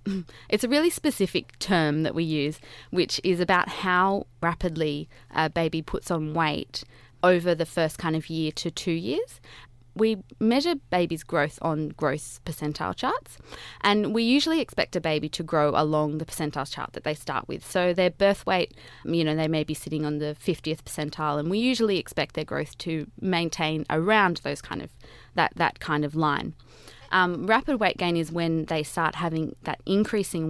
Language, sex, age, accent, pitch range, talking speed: English, female, 20-39, Australian, 150-180 Hz, 185 wpm